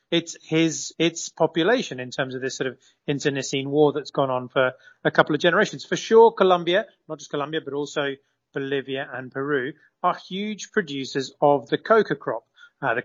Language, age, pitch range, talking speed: English, 30-49, 135-160 Hz, 185 wpm